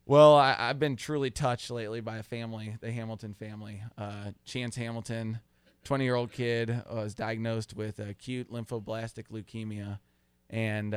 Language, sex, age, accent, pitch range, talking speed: English, male, 20-39, American, 110-135 Hz, 130 wpm